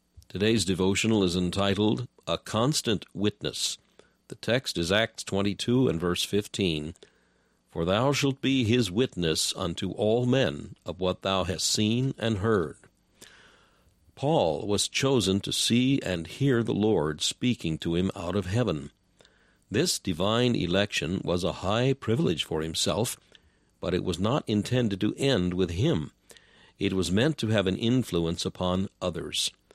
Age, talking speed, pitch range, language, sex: 60-79, 145 wpm, 90-115 Hz, English, male